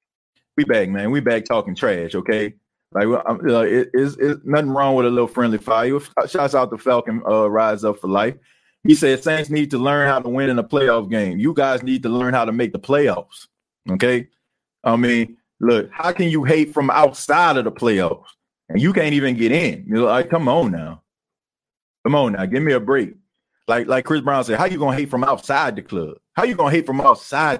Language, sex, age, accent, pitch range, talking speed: English, male, 30-49, American, 120-150 Hz, 230 wpm